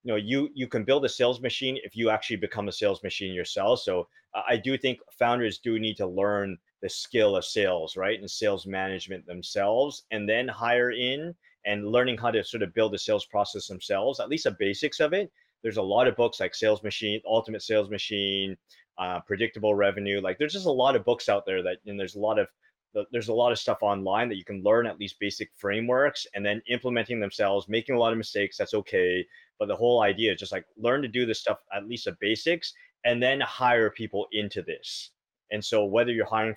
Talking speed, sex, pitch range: 225 wpm, male, 105-140 Hz